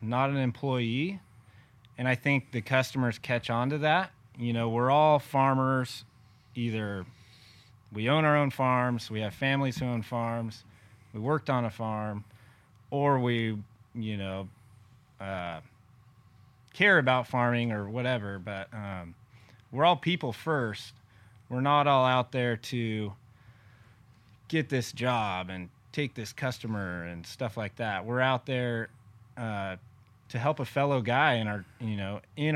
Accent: American